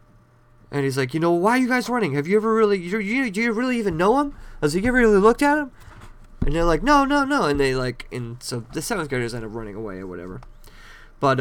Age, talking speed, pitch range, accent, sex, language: 30-49, 265 wpm, 120-160 Hz, American, male, English